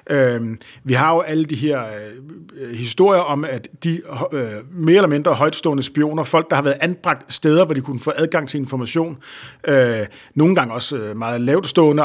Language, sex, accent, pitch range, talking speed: Danish, male, native, 135-170 Hz, 165 wpm